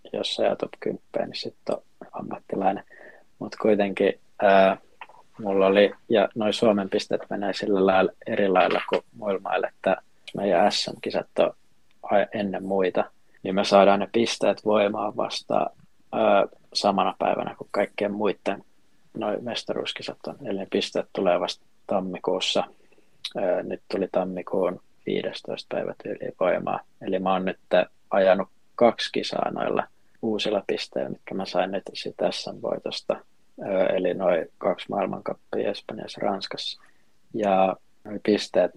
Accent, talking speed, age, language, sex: native, 125 wpm, 20-39, Finnish, male